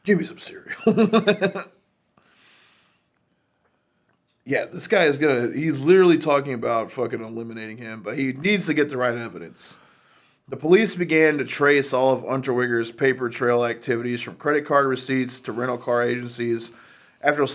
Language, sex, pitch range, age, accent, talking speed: English, male, 120-155 Hz, 20-39, American, 155 wpm